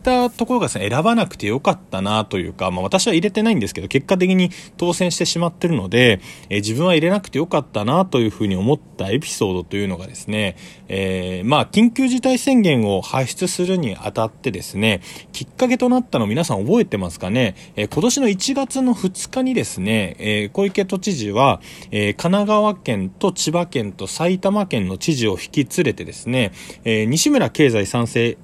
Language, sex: Japanese, male